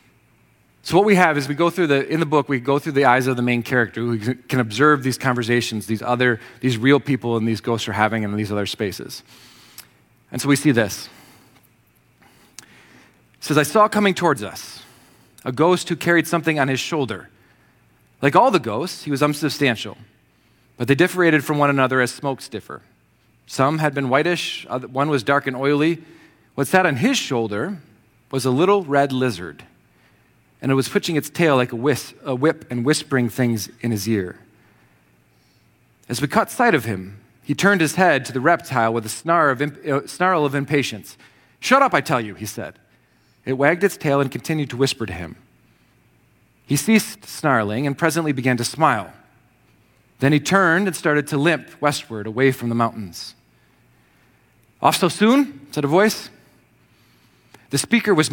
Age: 30-49